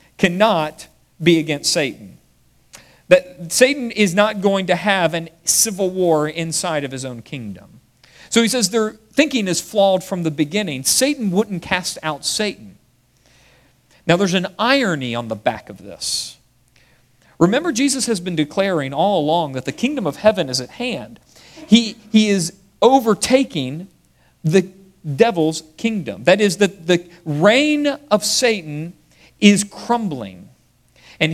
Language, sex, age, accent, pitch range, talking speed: English, male, 50-69, American, 150-210 Hz, 145 wpm